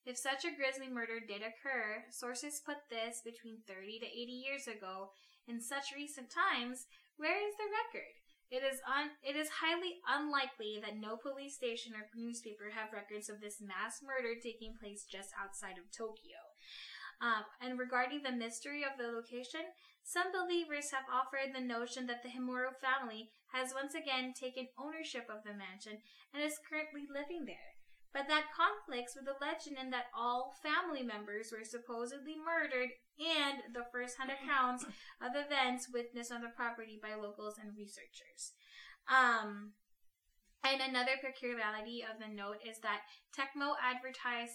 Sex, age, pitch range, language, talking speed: female, 10-29, 215-275 Hz, English, 160 wpm